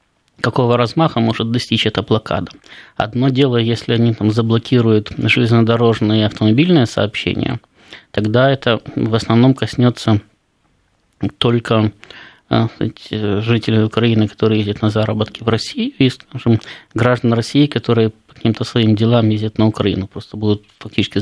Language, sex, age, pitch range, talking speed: Russian, male, 20-39, 110-130 Hz, 125 wpm